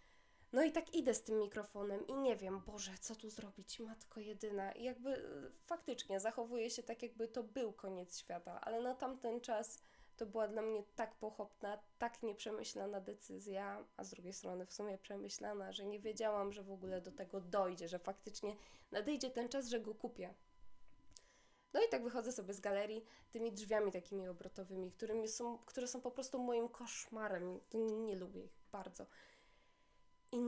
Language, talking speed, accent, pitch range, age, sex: Polish, 175 wpm, native, 200-240 Hz, 20-39, female